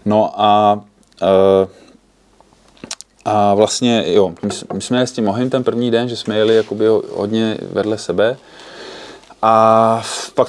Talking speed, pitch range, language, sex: 120 wpm, 105-120 Hz, Czech, male